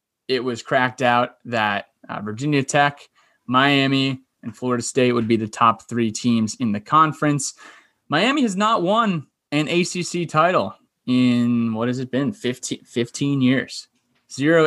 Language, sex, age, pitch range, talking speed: English, male, 20-39, 115-145 Hz, 150 wpm